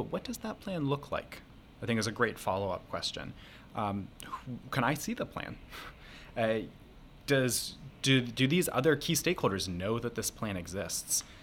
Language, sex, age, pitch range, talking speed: English, male, 20-39, 95-125 Hz, 170 wpm